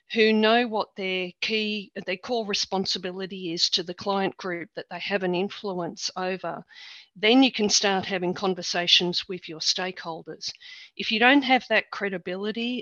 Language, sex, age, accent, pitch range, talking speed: English, female, 40-59, Australian, 180-220 Hz, 160 wpm